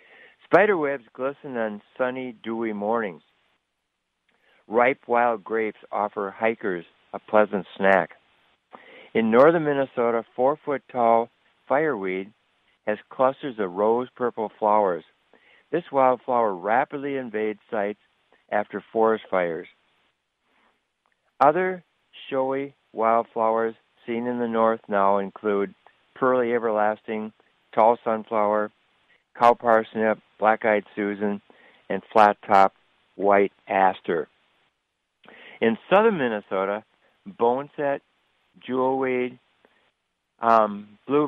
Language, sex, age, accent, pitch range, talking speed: English, male, 60-79, American, 105-125 Hz, 90 wpm